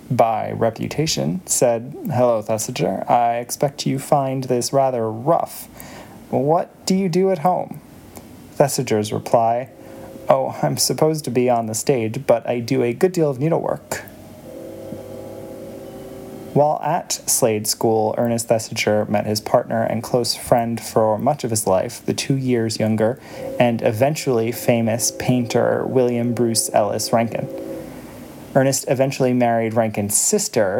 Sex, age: male, 20-39